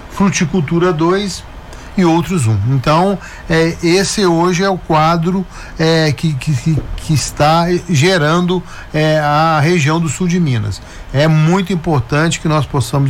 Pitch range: 140-180 Hz